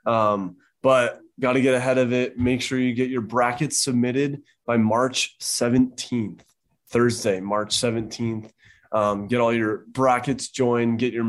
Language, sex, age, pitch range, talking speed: English, male, 20-39, 110-125 Hz, 155 wpm